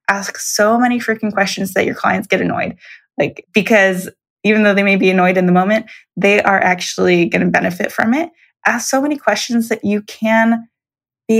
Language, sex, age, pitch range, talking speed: English, female, 20-39, 185-225 Hz, 195 wpm